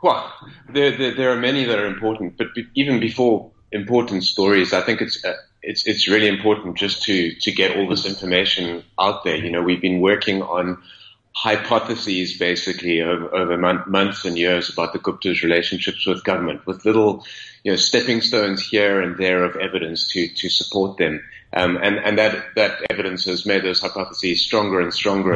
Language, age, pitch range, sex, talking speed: English, 30-49, 90-115 Hz, male, 190 wpm